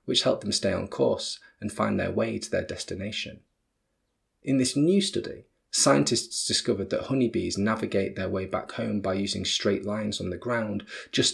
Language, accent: English, British